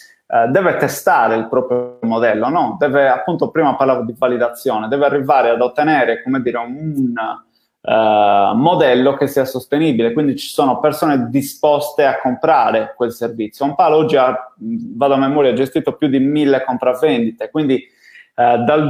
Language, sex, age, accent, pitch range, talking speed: Italian, male, 30-49, native, 125-150 Hz, 155 wpm